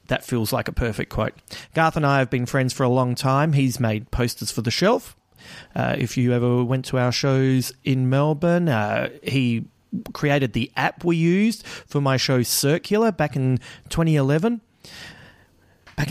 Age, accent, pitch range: 30-49, Australian, 125-150 Hz